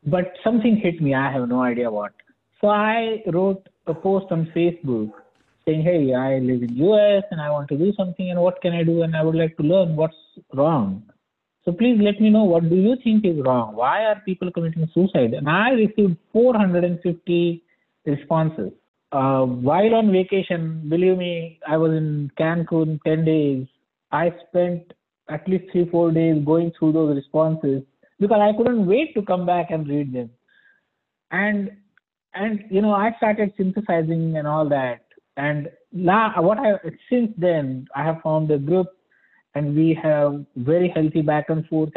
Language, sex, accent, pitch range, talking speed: English, male, Indian, 150-195 Hz, 175 wpm